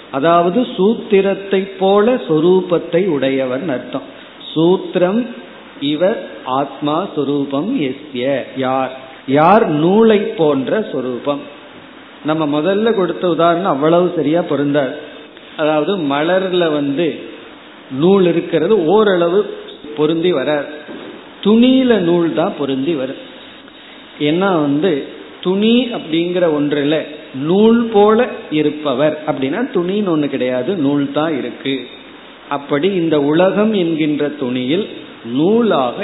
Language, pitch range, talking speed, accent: Tamil, 145-190 Hz, 85 wpm, native